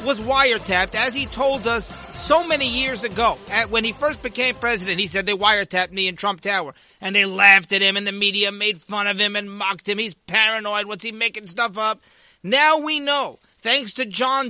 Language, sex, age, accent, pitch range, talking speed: English, male, 40-59, American, 200-250 Hz, 210 wpm